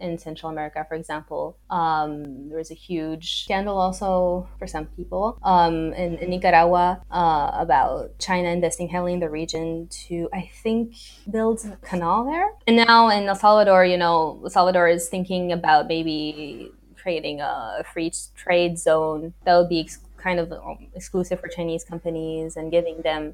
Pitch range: 160-185 Hz